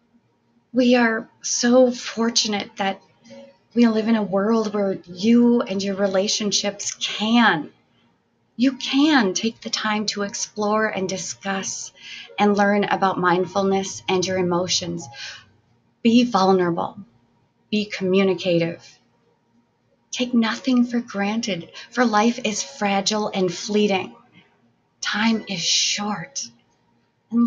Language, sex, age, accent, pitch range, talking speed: English, female, 30-49, American, 190-240 Hz, 110 wpm